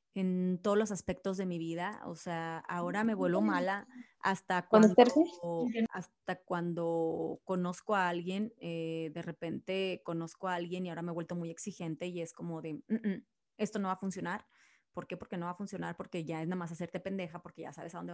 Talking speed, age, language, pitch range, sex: 200 wpm, 20-39, Spanish, 180-225 Hz, female